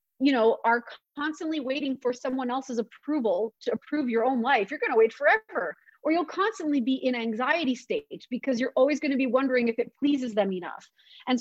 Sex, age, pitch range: female, 30-49, 235-295 Hz